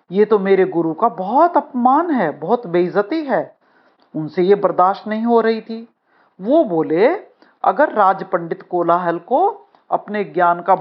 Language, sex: Hindi, female